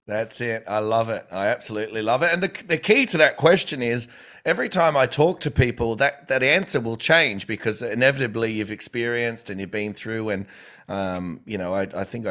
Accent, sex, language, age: Australian, male, English, 30-49